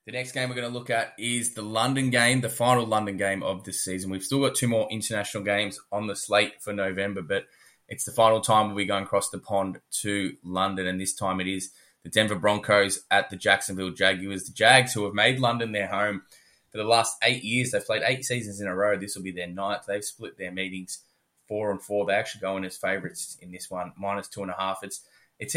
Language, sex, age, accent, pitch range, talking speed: English, male, 20-39, Australian, 95-110 Hz, 245 wpm